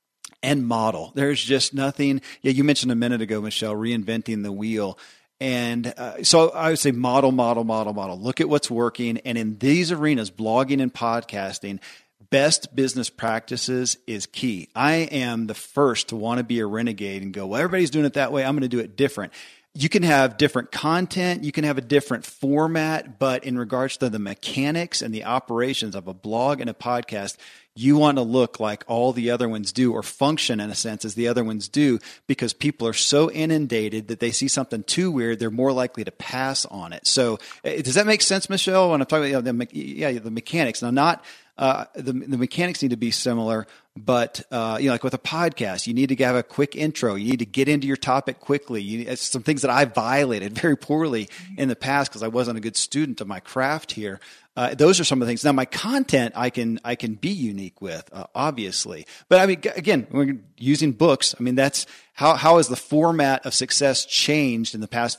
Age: 40-59